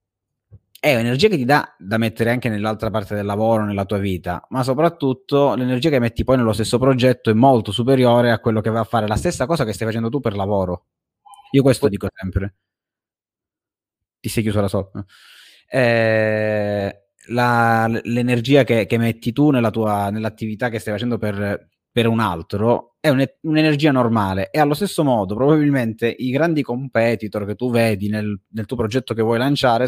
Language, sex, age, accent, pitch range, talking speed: Italian, male, 20-39, native, 105-130 Hz, 175 wpm